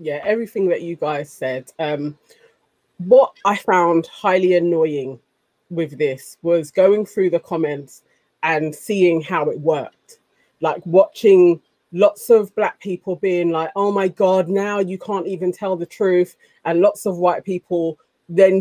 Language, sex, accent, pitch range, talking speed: English, female, British, 170-210 Hz, 155 wpm